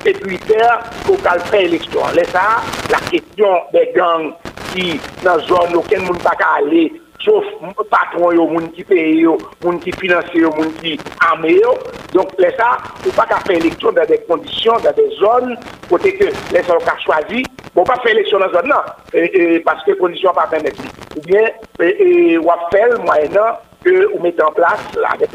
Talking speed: 180 wpm